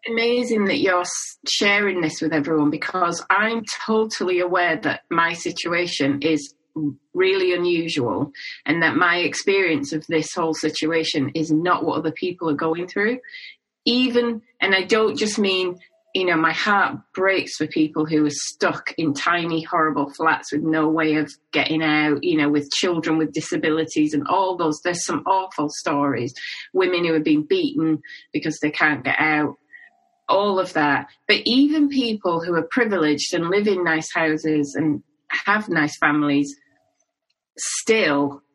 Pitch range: 155-195 Hz